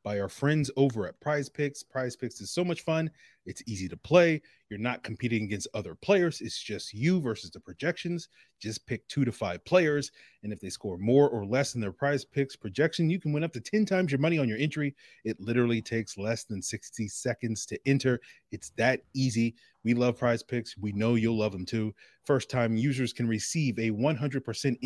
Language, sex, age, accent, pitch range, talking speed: English, male, 30-49, American, 115-145 Hz, 210 wpm